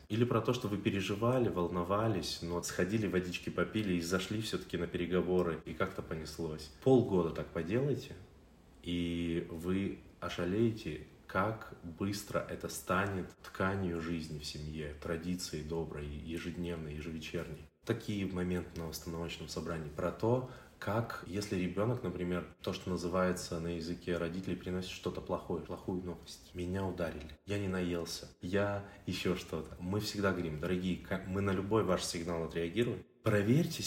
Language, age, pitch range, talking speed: Russian, 20-39, 85-110 Hz, 140 wpm